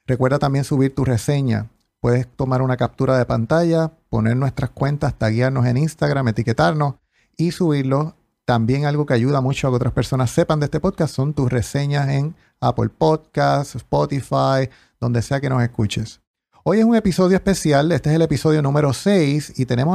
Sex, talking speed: male, 175 wpm